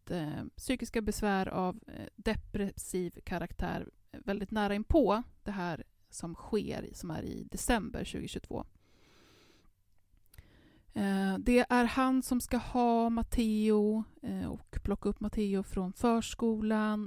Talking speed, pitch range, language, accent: 105 wpm, 195-230 Hz, Swedish, native